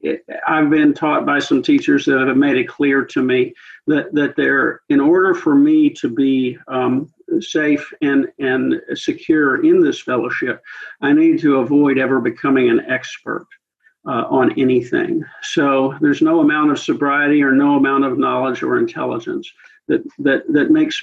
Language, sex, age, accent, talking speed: English, male, 50-69, American, 165 wpm